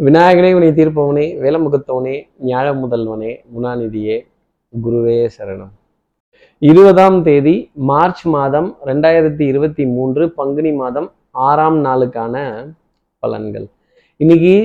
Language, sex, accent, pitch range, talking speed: Tamil, male, native, 125-165 Hz, 90 wpm